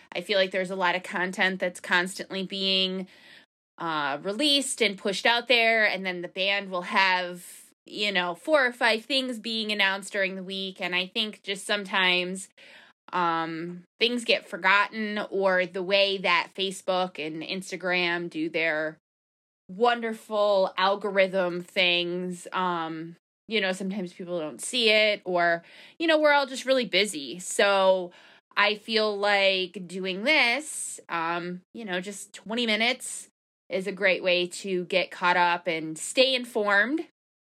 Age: 20-39